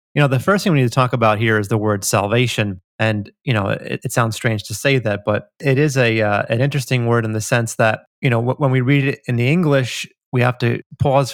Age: 30-49